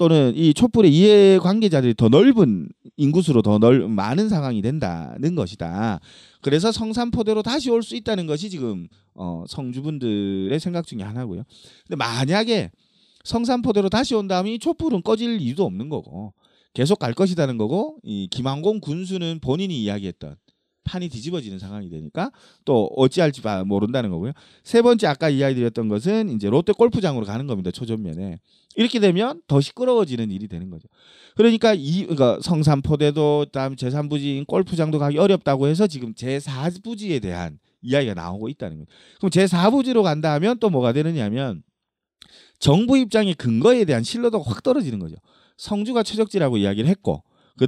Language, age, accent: Korean, 40-59, native